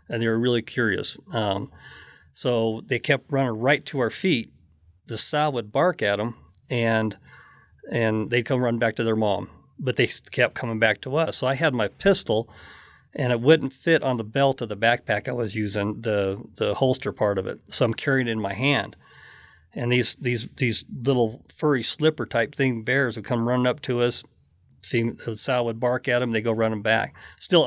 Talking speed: 205 wpm